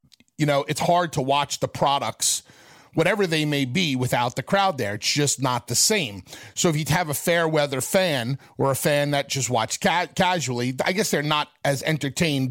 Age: 40-59